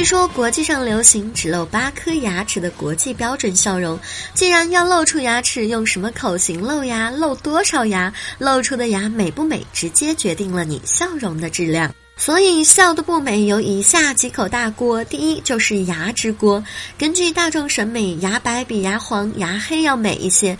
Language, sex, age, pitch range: Chinese, male, 20-39, 200-285 Hz